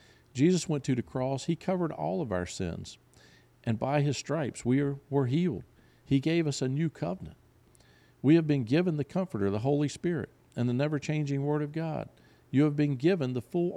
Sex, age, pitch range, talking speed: male, 50-69, 110-145 Hz, 195 wpm